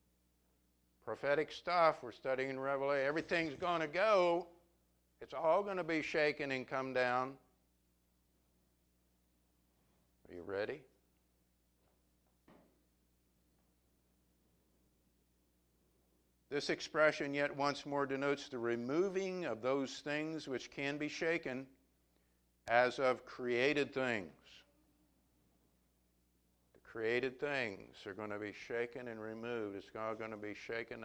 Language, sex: English, male